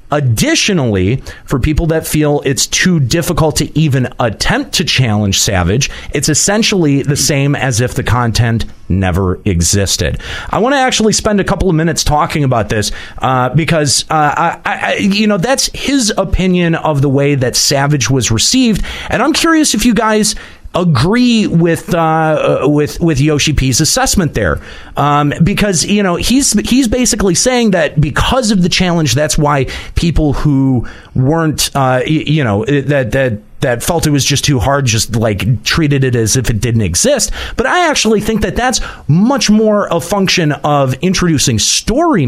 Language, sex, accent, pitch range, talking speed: English, male, American, 125-185 Hz, 165 wpm